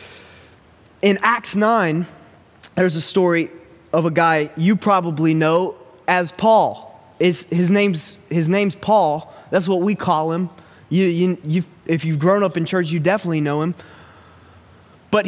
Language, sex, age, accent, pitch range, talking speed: English, male, 20-39, American, 160-205 Hz, 150 wpm